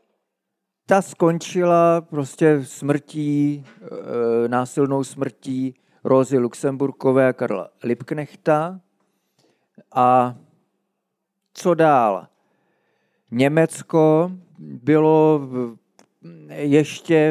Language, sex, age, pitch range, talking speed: Slovak, male, 40-59, 135-165 Hz, 55 wpm